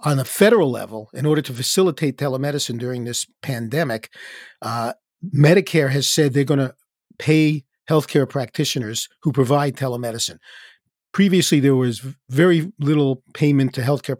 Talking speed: 140 wpm